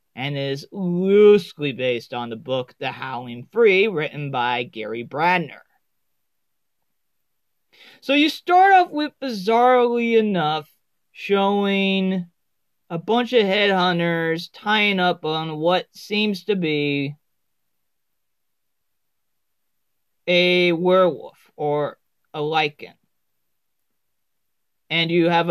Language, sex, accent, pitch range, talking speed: English, male, American, 150-195 Hz, 95 wpm